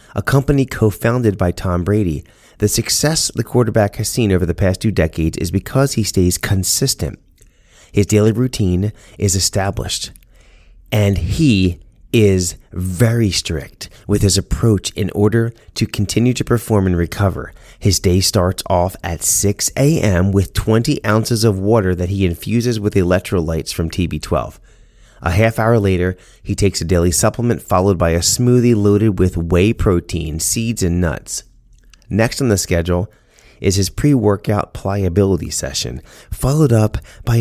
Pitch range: 90-115 Hz